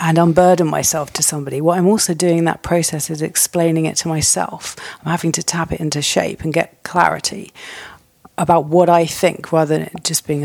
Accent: British